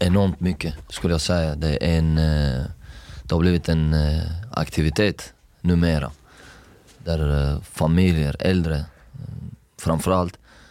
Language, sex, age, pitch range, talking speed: Swedish, male, 30-49, 80-90 Hz, 100 wpm